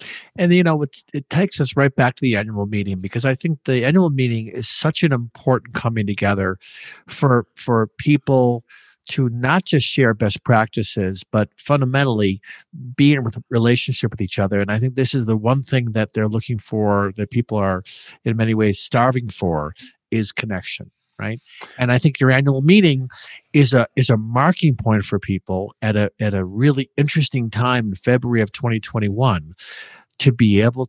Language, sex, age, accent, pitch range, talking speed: English, male, 50-69, American, 110-140 Hz, 185 wpm